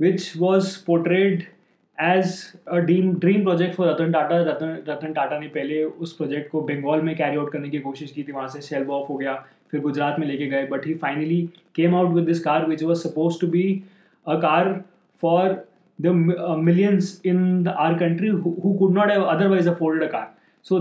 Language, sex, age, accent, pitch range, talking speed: Hindi, male, 20-39, native, 160-185 Hz, 210 wpm